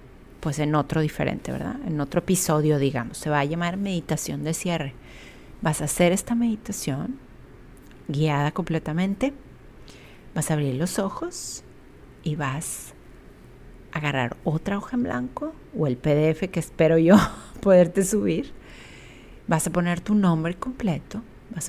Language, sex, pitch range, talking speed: Spanish, female, 150-190 Hz, 140 wpm